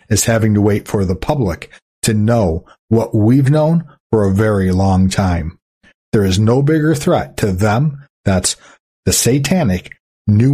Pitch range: 95-135 Hz